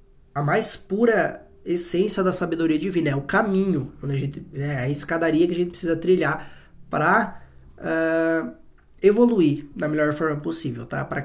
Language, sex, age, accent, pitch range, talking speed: Portuguese, male, 20-39, Brazilian, 140-175 Hz, 155 wpm